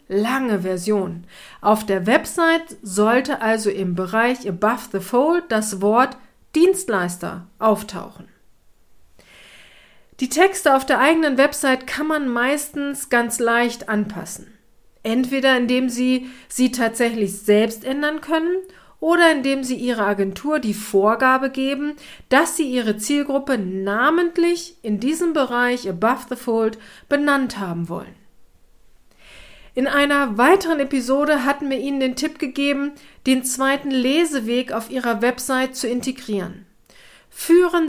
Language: German